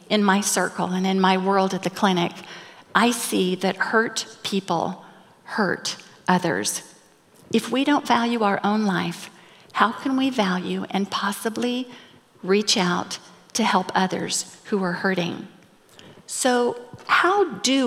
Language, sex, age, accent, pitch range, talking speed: English, female, 50-69, American, 185-225 Hz, 140 wpm